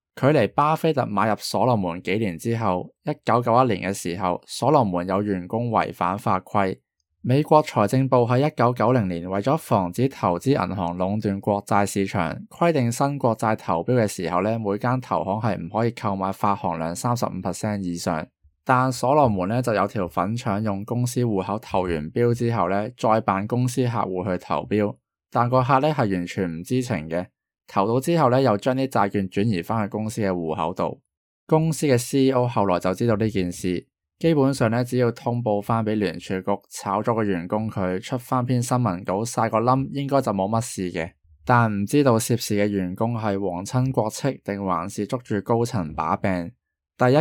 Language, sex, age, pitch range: Chinese, male, 20-39, 95-125 Hz